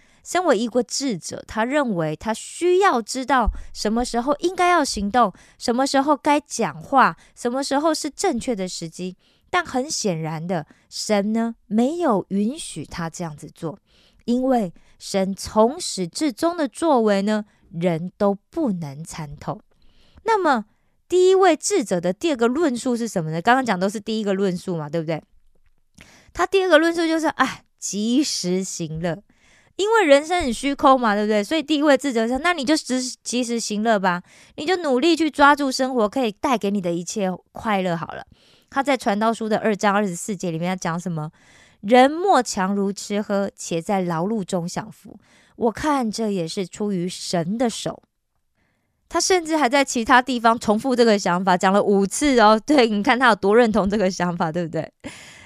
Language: Korean